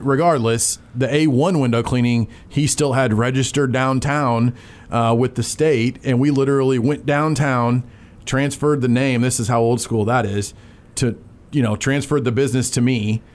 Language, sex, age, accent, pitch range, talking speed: English, male, 30-49, American, 110-130 Hz, 165 wpm